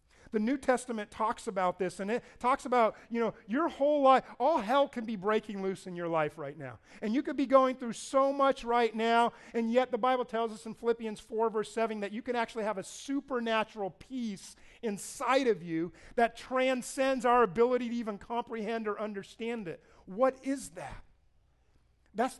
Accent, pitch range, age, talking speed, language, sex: American, 185-240 Hz, 40-59, 195 wpm, English, male